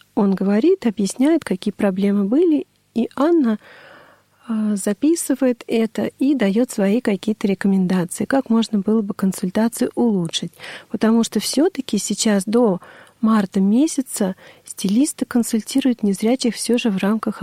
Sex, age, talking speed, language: female, 40-59, 120 wpm, Russian